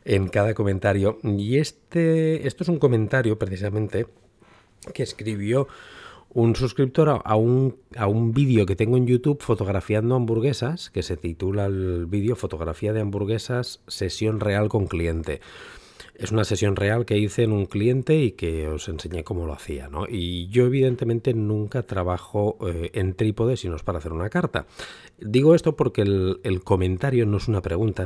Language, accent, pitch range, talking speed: Spanish, Spanish, 90-125 Hz, 165 wpm